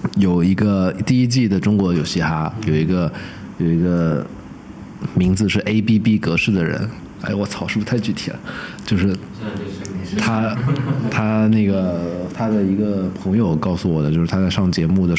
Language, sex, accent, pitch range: Chinese, male, native, 85-105 Hz